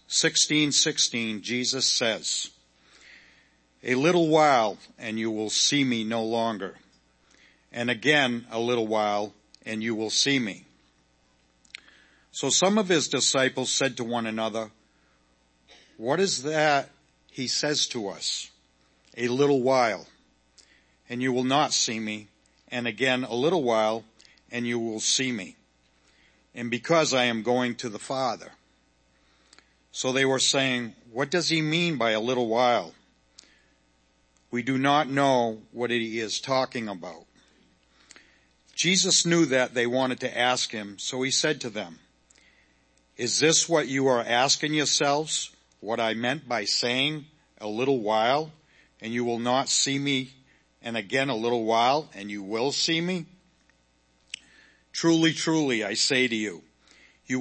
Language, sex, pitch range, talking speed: English, male, 100-135 Hz, 145 wpm